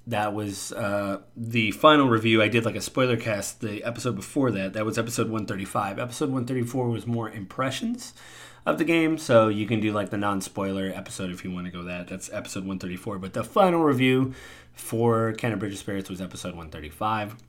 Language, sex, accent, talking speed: English, male, American, 190 wpm